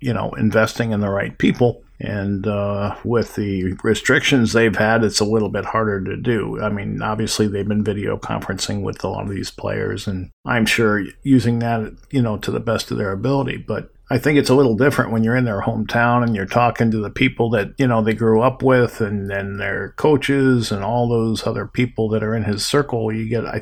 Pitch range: 105-120 Hz